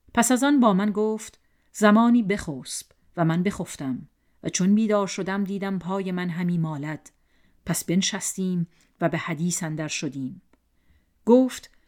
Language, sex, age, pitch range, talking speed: Persian, female, 40-59, 155-200 Hz, 140 wpm